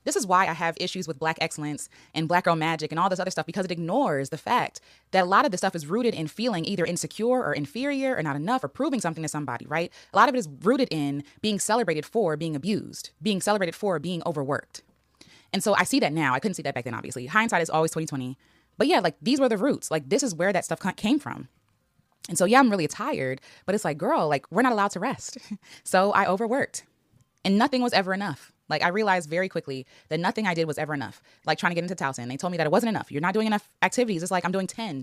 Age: 20-39